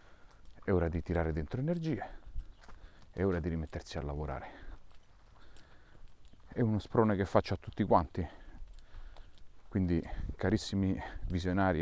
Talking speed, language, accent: 115 wpm, Italian, native